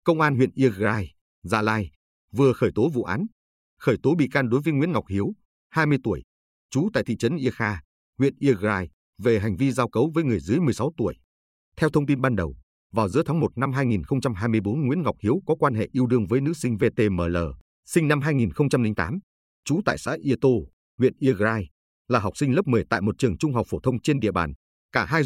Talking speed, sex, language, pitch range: 210 wpm, male, Vietnamese, 100-140 Hz